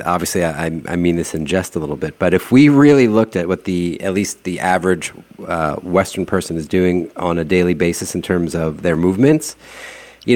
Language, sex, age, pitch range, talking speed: English, male, 40-59, 85-110 Hz, 215 wpm